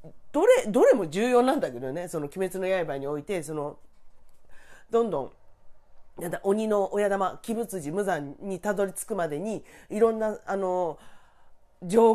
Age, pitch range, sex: 40-59, 170-260 Hz, female